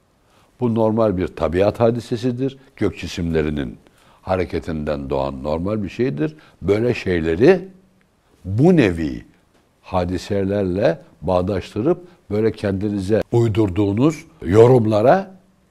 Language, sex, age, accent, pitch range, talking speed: Turkish, male, 60-79, native, 85-120 Hz, 85 wpm